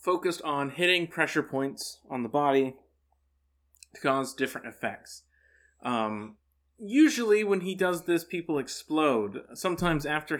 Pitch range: 110-160 Hz